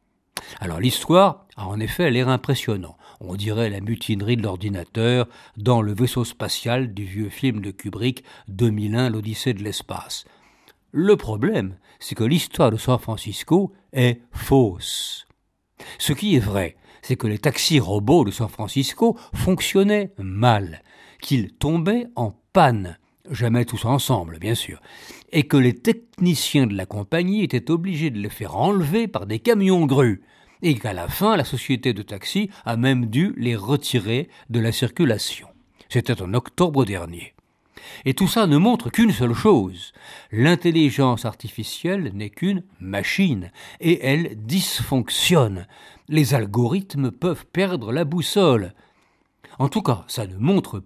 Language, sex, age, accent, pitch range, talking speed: French, male, 60-79, French, 105-160 Hz, 145 wpm